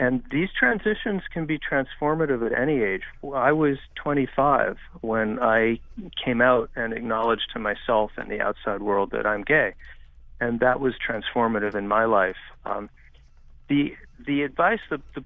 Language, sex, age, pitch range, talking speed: English, male, 40-59, 105-150 Hz, 155 wpm